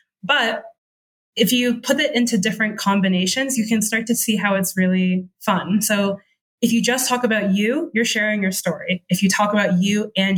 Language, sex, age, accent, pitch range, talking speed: English, female, 20-39, American, 195-235 Hz, 195 wpm